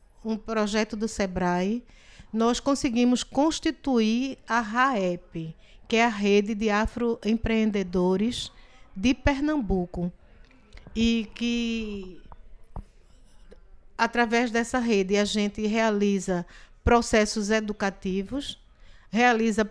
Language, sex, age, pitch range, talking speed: Portuguese, female, 60-79, 210-255 Hz, 85 wpm